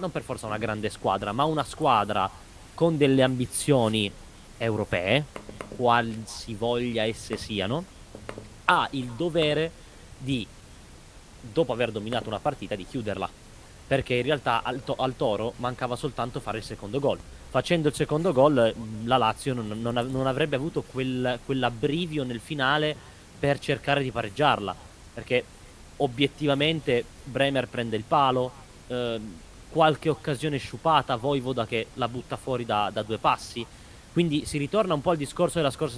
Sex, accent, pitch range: male, native, 115-145 Hz